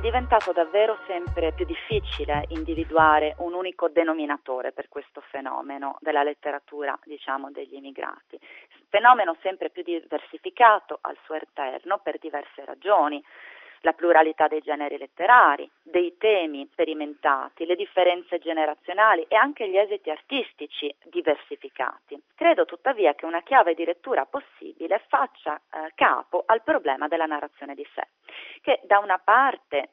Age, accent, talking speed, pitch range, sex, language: 40-59, native, 130 wpm, 155-245 Hz, female, Italian